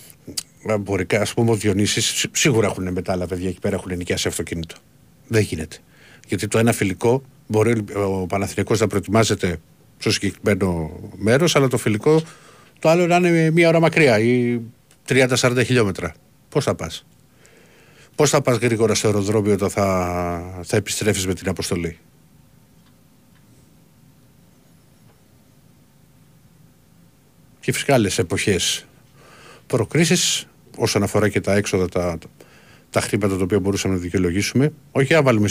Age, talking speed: 50-69, 130 wpm